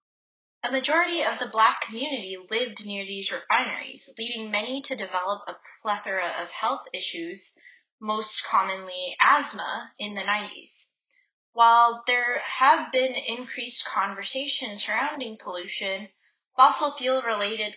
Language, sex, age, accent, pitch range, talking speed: English, female, 10-29, American, 200-270 Hz, 120 wpm